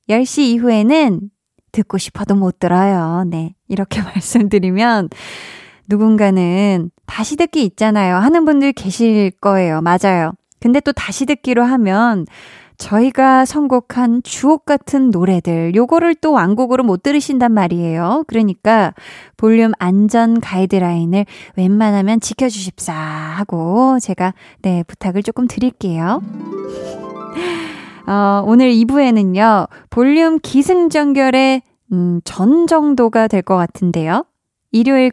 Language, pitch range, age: Korean, 185-260 Hz, 20-39